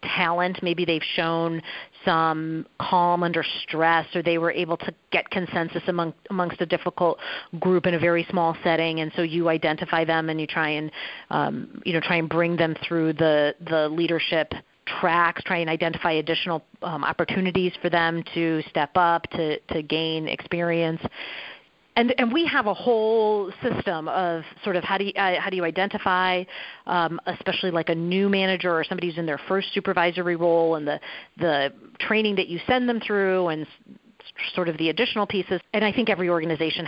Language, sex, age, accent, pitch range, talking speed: English, female, 40-59, American, 165-190 Hz, 185 wpm